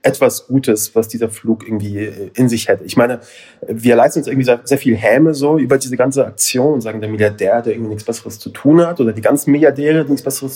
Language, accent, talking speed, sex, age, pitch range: German, German, 235 wpm, male, 30-49, 115-145 Hz